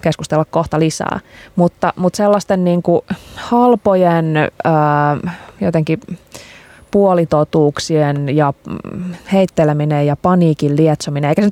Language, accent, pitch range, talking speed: Finnish, native, 150-190 Hz, 105 wpm